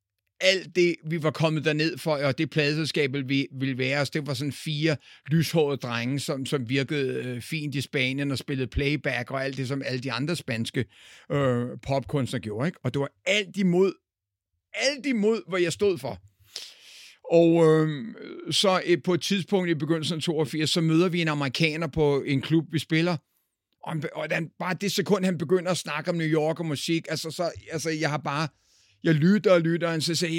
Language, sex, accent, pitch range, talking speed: Danish, male, native, 135-170 Hz, 200 wpm